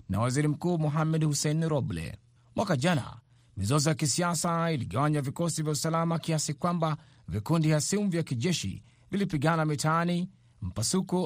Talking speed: 135 wpm